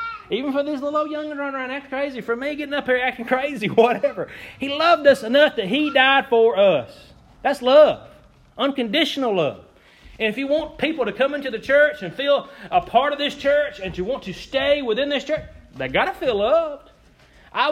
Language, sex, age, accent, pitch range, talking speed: English, male, 30-49, American, 195-275 Hz, 205 wpm